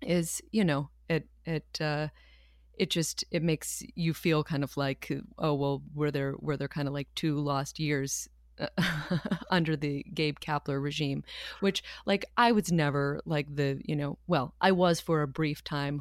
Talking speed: 180 wpm